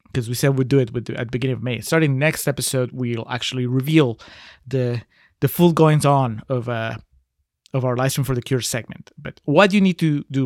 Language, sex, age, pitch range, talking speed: English, male, 30-49, 125-155 Hz, 220 wpm